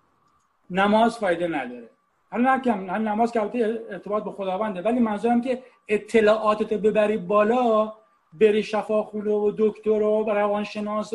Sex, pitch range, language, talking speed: male, 190-240 Hz, English, 135 wpm